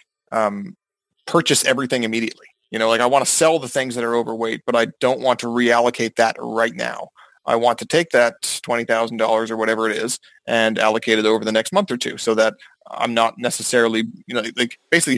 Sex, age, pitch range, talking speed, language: male, 30-49, 110-130 Hz, 215 wpm, English